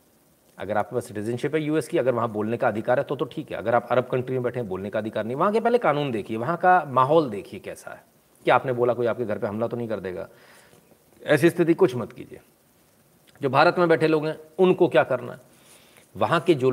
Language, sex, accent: Hindi, male, native